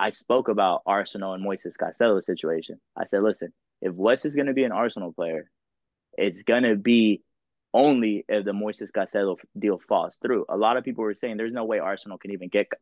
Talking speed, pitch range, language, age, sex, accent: 210 wpm, 95-110 Hz, English, 20-39, male, American